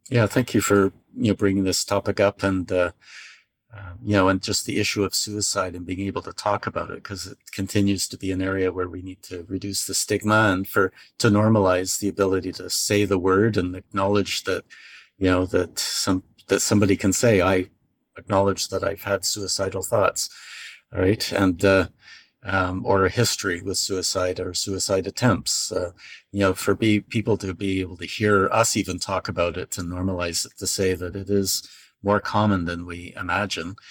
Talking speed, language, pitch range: 195 wpm, English, 95-105 Hz